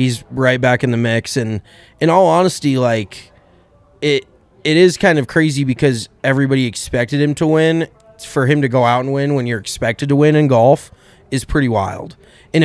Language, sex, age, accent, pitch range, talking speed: English, male, 20-39, American, 115-145 Hz, 195 wpm